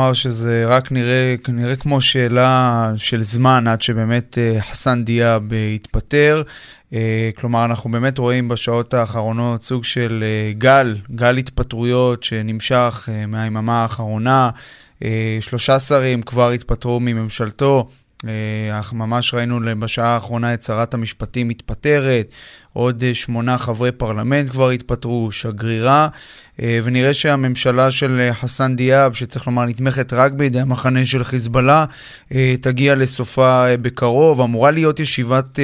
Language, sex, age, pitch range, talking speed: Hebrew, male, 20-39, 120-140 Hz, 125 wpm